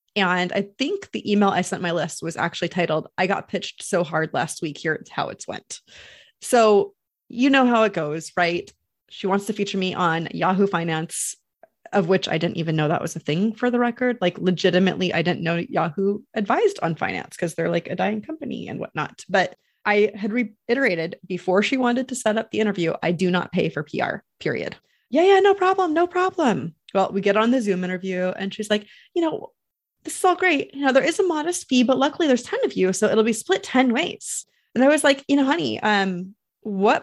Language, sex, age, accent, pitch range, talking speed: English, female, 30-49, American, 175-250 Hz, 220 wpm